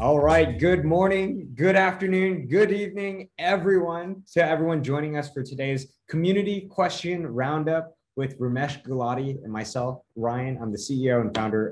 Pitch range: 145-190 Hz